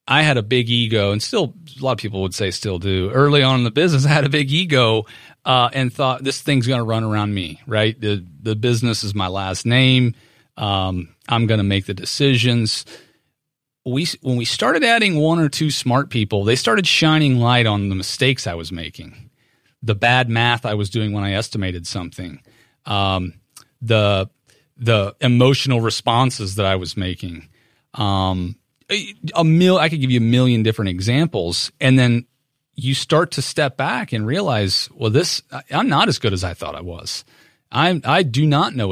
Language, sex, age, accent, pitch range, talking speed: English, male, 40-59, American, 105-135 Hz, 195 wpm